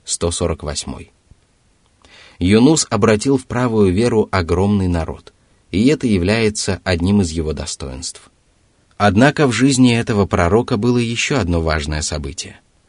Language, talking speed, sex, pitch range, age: Russian, 115 wpm, male, 85-110 Hz, 30-49